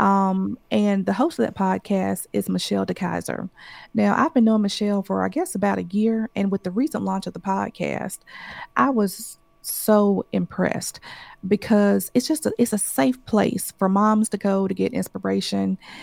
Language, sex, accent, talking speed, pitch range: English, female, American, 180 wpm, 180-220 Hz